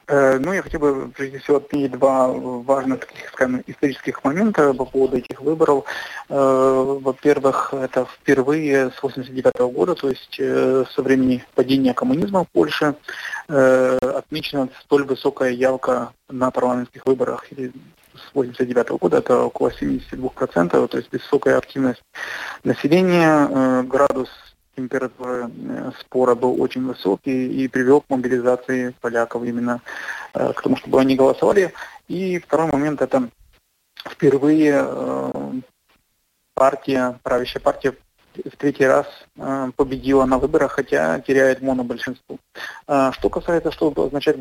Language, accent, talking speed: Russian, native, 120 wpm